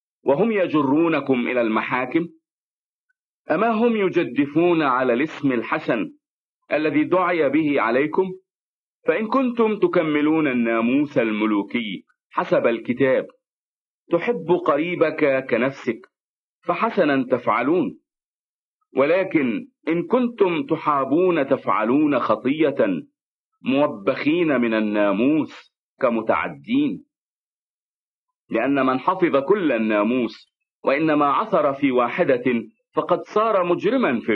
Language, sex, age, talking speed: English, male, 40-59, 85 wpm